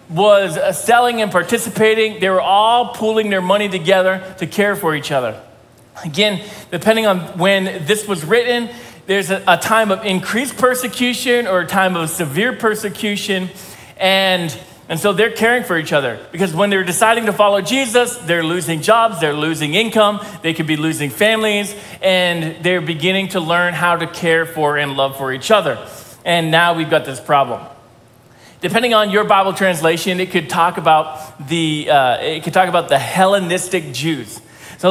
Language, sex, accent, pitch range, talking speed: English, male, American, 165-210 Hz, 170 wpm